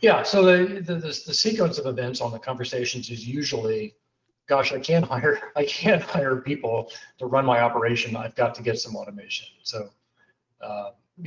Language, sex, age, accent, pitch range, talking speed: English, male, 40-59, American, 120-150 Hz, 180 wpm